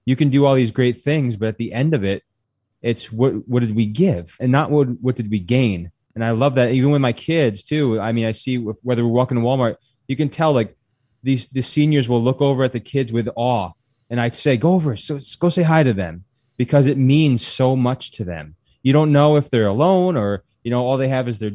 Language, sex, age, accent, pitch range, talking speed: English, male, 20-39, American, 115-140 Hz, 255 wpm